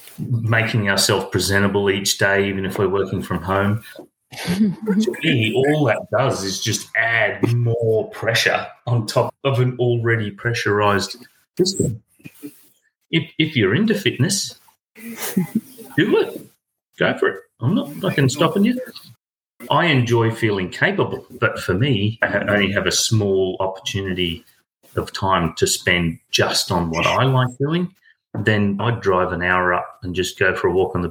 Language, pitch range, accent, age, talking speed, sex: English, 95-130 Hz, Australian, 30-49, 150 wpm, male